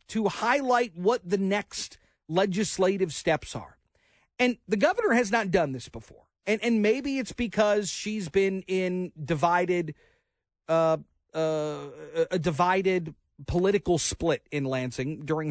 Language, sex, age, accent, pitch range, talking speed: English, male, 40-59, American, 155-210 Hz, 130 wpm